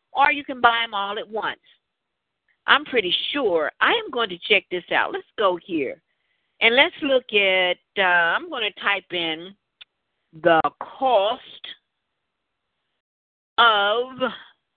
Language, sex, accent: English, female, American